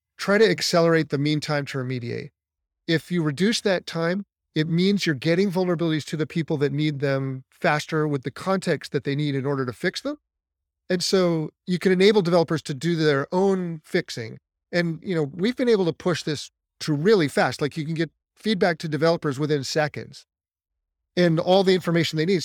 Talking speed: 200 wpm